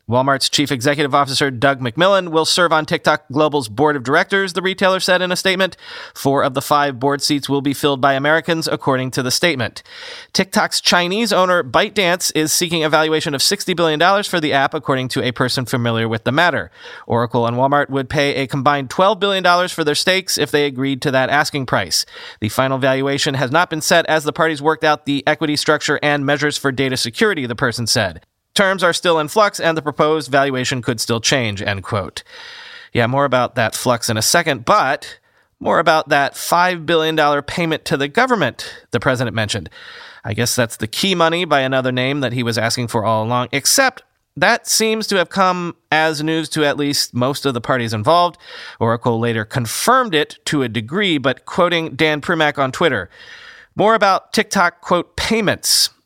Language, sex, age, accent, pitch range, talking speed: English, male, 30-49, American, 130-170 Hz, 195 wpm